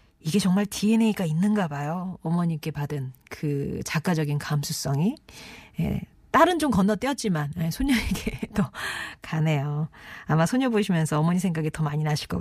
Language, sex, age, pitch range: Korean, female, 40-59, 160-215 Hz